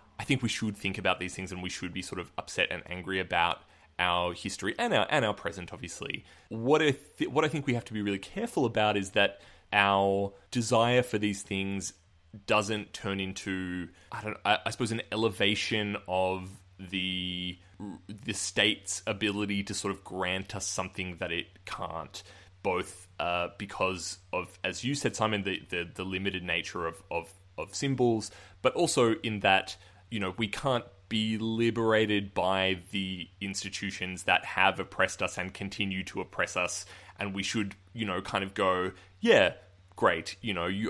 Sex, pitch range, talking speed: male, 95-110 Hz, 180 wpm